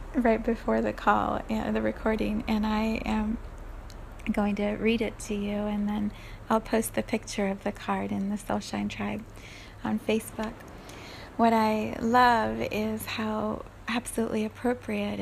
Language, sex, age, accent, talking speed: English, female, 30-49, American, 155 wpm